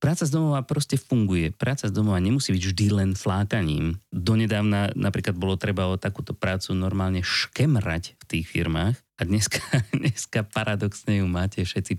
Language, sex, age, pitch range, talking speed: Slovak, male, 30-49, 95-125 Hz, 160 wpm